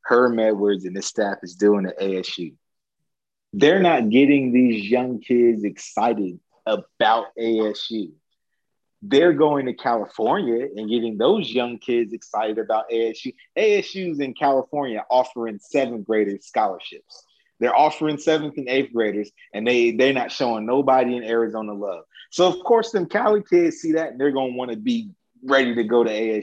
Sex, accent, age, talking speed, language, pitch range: male, American, 30-49, 160 wpm, English, 115-155 Hz